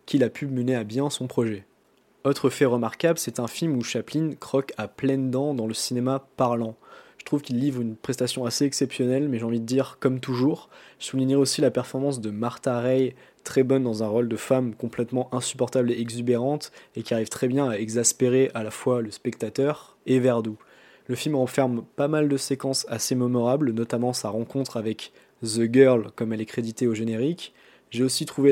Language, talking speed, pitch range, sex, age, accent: French, 200 wpm, 115-135 Hz, male, 20-39, French